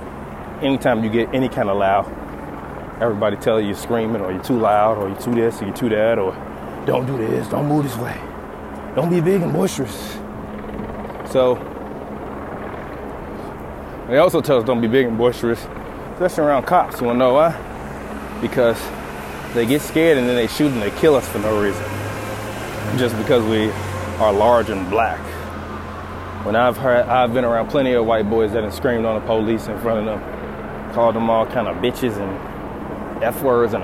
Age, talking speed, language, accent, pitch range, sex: 20-39, 185 wpm, English, American, 105-130 Hz, male